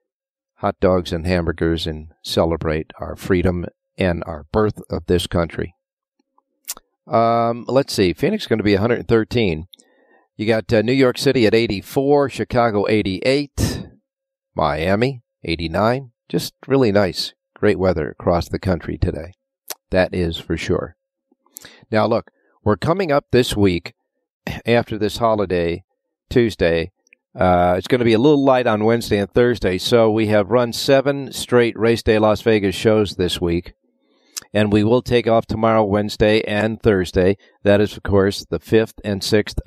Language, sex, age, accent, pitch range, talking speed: English, male, 50-69, American, 95-125 Hz, 155 wpm